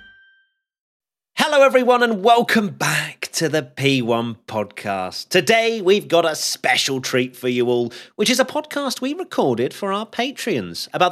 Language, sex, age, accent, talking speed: English, male, 30-49, British, 150 wpm